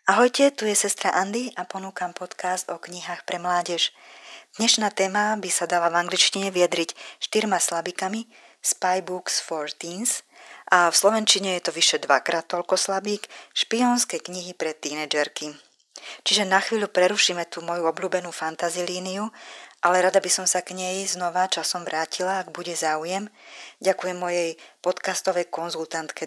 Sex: female